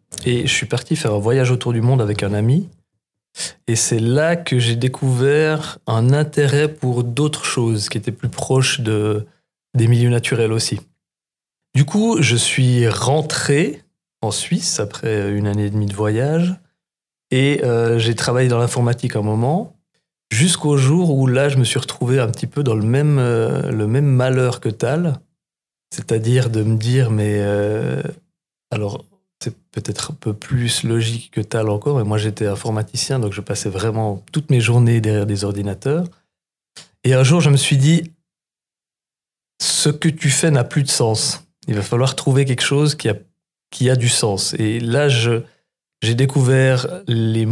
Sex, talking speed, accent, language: male, 175 wpm, French, French